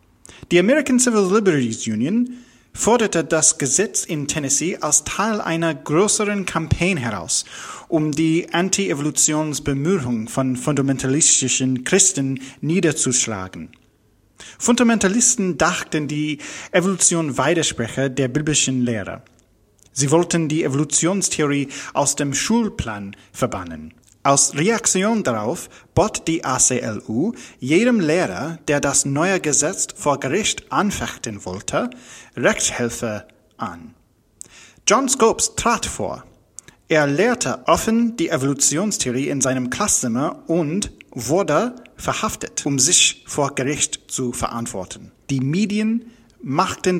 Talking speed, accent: 105 wpm, German